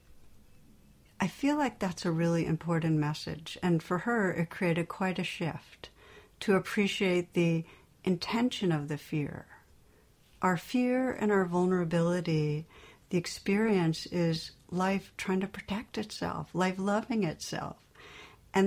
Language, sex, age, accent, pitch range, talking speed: English, female, 60-79, American, 165-200 Hz, 130 wpm